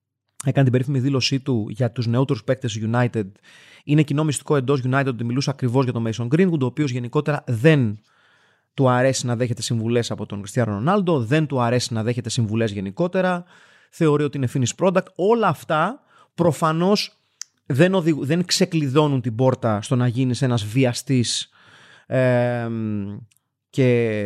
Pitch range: 120-165 Hz